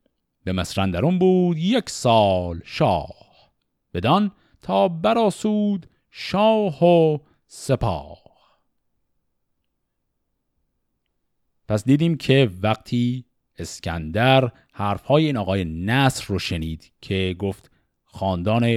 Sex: male